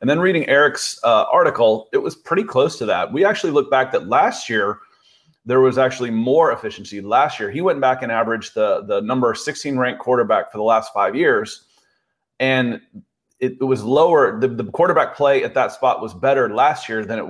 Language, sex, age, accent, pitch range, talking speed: English, male, 30-49, American, 115-145 Hz, 205 wpm